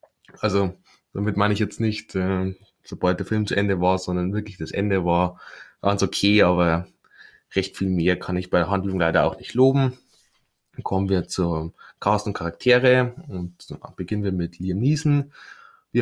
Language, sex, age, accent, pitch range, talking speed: German, male, 20-39, German, 90-110 Hz, 180 wpm